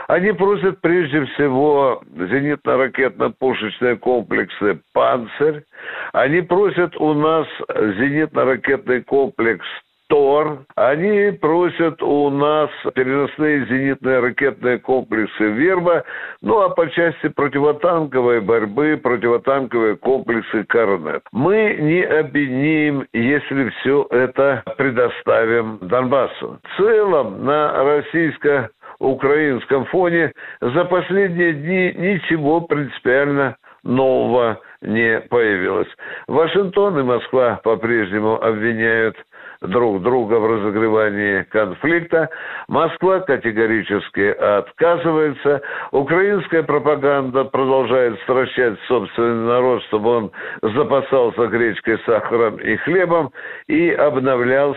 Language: Russian